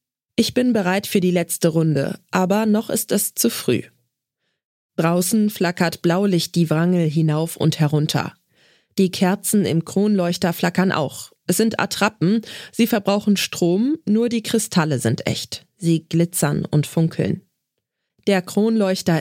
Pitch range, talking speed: 165-205 Hz, 135 wpm